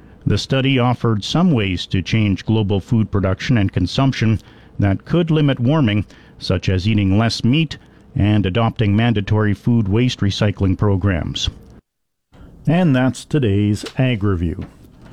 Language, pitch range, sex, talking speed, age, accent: English, 105-130 Hz, male, 125 wpm, 50-69, American